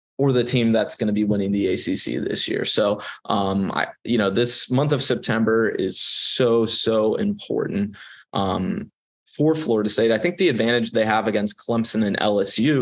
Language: English